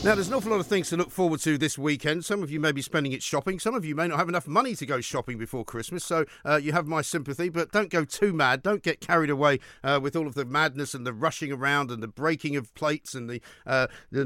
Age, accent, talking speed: 50-69, British, 285 wpm